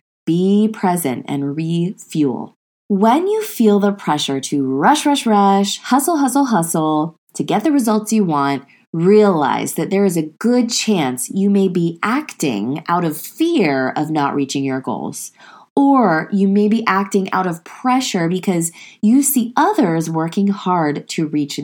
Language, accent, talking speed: English, American, 160 wpm